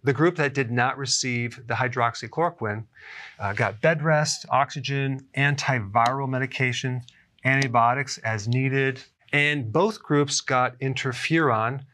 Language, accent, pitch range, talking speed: English, American, 120-140 Hz, 115 wpm